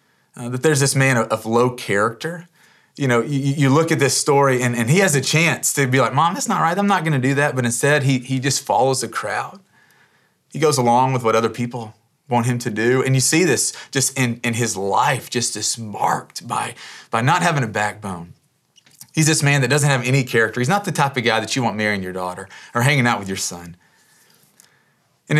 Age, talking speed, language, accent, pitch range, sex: 30-49, 235 wpm, English, American, 120-145 Hz, male